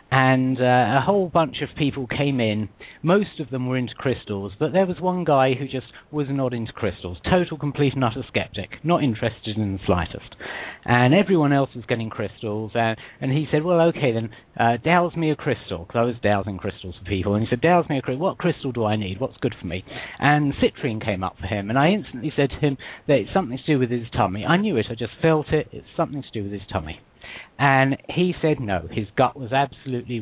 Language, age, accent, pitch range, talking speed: English, 50-69, British, 110-150 Hz, 240 wpm